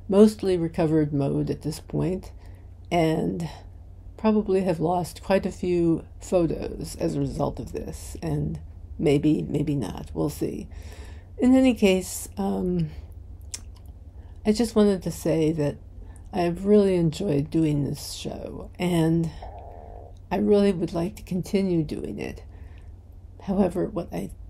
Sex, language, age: female, English, 50-69